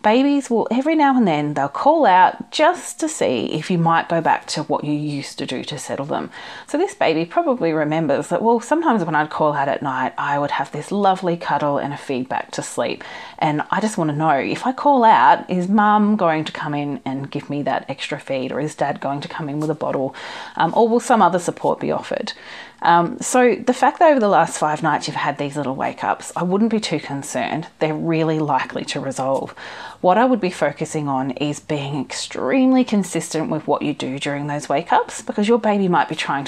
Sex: female